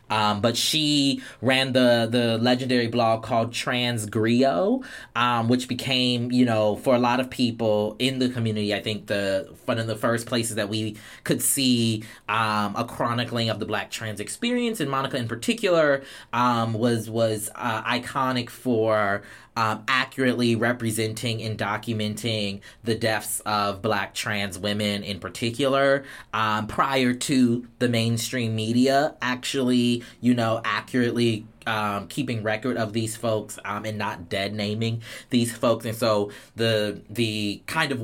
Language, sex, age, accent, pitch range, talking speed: English, male, 20-39, American, 105-125 Hz, 150 wpm